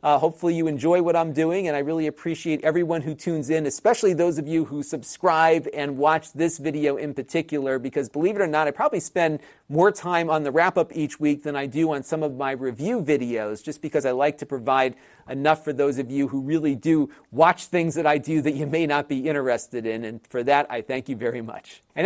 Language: English